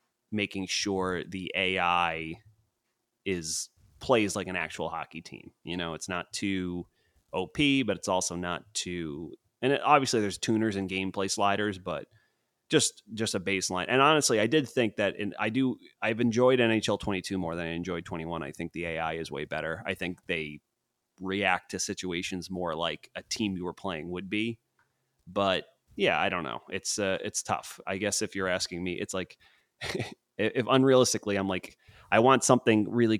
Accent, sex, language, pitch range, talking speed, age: American, male, English, 90-105 Hz, 180 wpm, 30-49